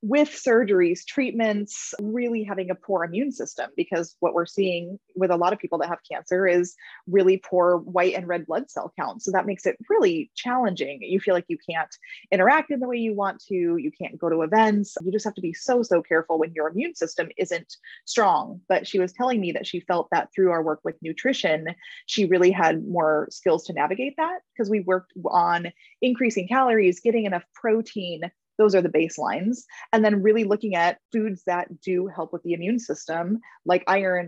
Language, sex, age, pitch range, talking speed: English, female, 20-39, 175-240 Hz, 205 wpm